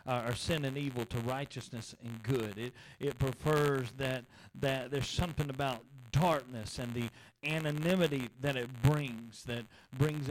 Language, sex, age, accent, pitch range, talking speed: English, male, 40-59, American, 120-155 Hz, 145 wpm